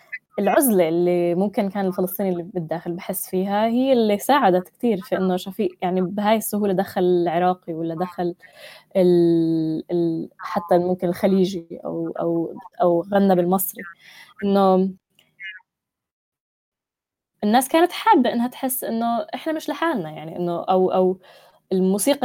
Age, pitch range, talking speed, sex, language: 10-29, 180-220 Hz, 125 wpm, female, Arabic